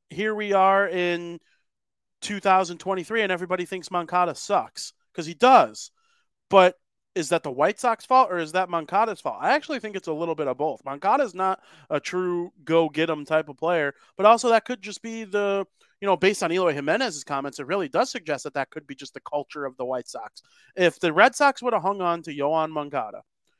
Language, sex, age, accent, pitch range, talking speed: English, male, 30-49, American, 140-180 Hz, 215 wpm